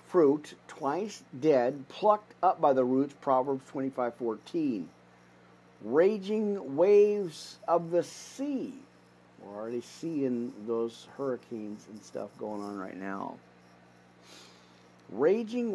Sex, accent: male, American